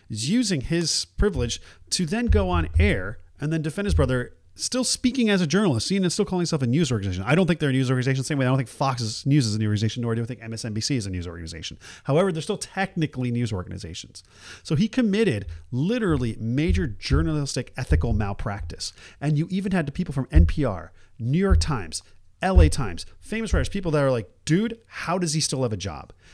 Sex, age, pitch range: male, 40-59, 105-160 Hz